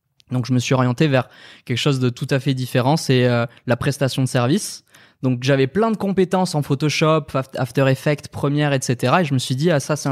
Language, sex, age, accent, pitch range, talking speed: French, male, 20-39, French, 120-140 Hz, 230 wpm